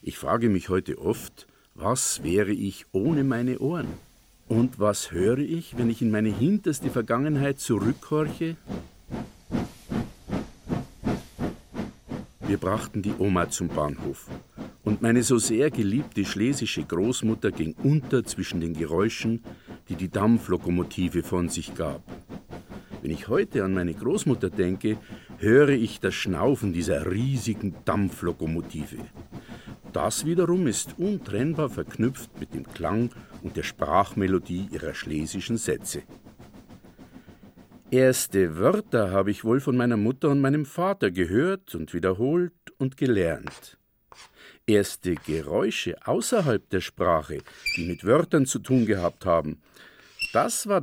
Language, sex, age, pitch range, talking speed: German, male, 50-69, 90-130 Hz, 125 wpm